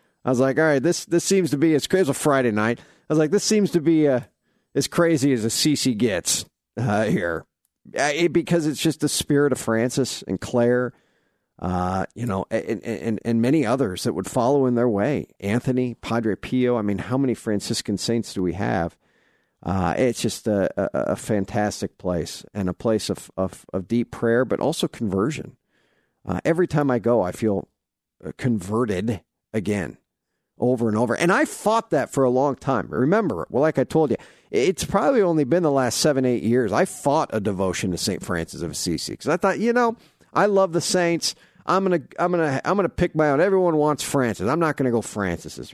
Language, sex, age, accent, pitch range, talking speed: English, male, 50-69, American, 105-155 Hz, 205 wpm